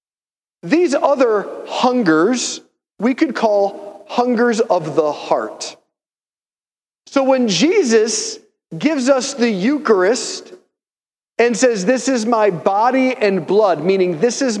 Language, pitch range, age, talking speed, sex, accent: English, 170-250 Hz, 40-59, 115 wpm, male, American